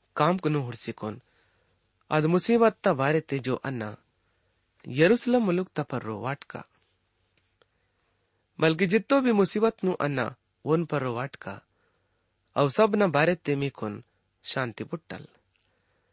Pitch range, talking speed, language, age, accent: 110-175 Hz, 100 wpm, English, 30-49, Indian